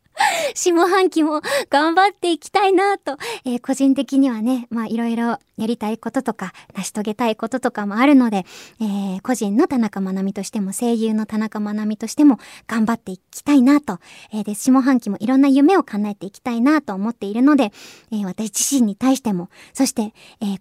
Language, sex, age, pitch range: Japanese, male, 20-39, 225-345 Hz